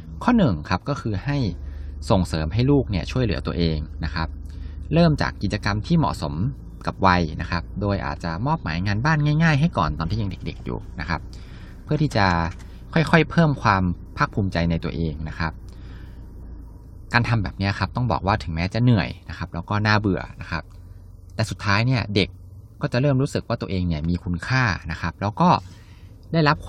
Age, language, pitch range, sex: 20-39, Thai, 85-115 Hz, male